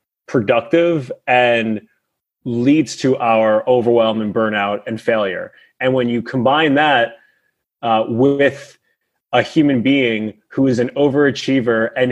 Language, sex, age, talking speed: English, male, 20-39, 125 wpm